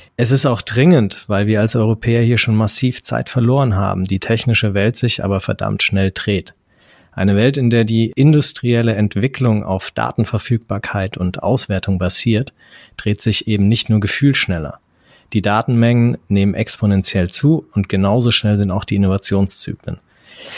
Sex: male